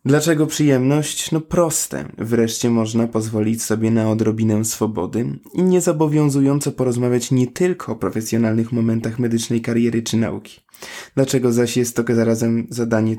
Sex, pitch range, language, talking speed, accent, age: male, 115-135 Hz, Polish, 130 wpm, native, 20-39